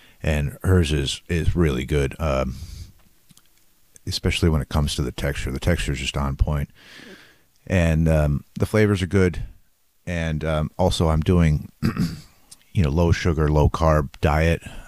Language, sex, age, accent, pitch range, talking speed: English, male, 30-49, American, 75-90 Hz, 155 wpm